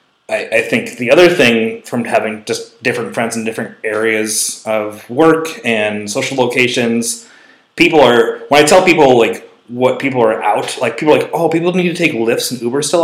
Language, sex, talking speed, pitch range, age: English, male, 195 wpm, 110-135 Hz, 20-39